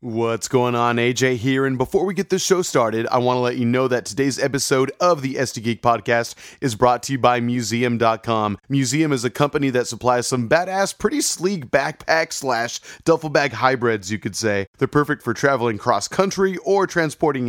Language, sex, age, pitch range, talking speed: English, male, 30-49, 125-155 Hz, 195 wpm